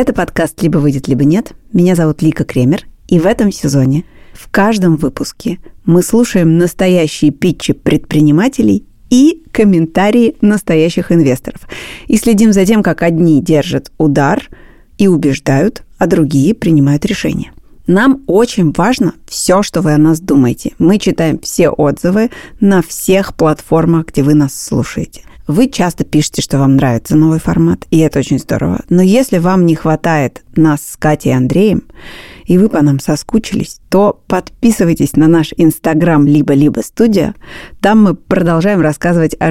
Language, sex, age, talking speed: Russian, female, 30-49, 150 wpm